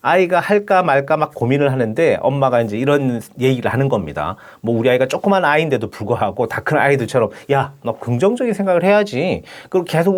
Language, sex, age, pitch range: Korean, male, 40-59, 120-185 Hz